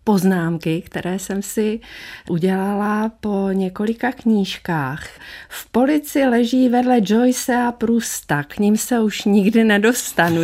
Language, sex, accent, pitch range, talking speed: Czech, female, native, 180-225 Hz, 115 wpm